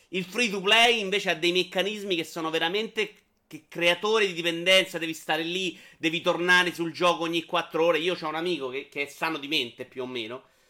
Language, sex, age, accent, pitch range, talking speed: Italian, male, 30-49, native, 160-190 Hz, 215 wpm